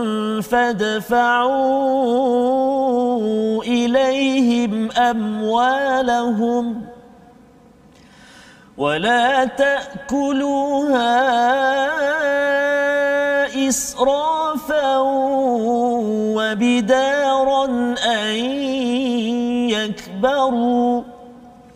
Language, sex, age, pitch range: Malayalam, male, 40-59, 245-285 Hz